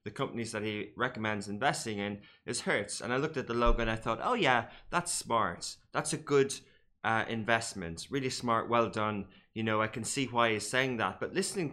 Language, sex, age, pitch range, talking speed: English, male, 20-39, 115-140 Hz, 215 wpm